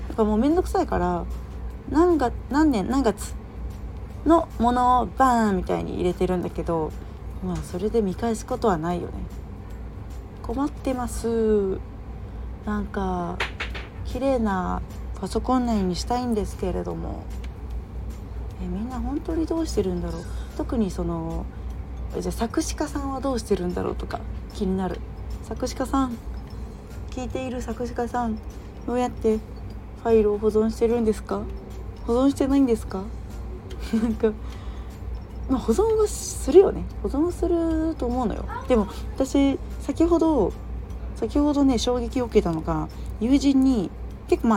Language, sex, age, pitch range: Japanese, female, 30-49, 180-265 Hz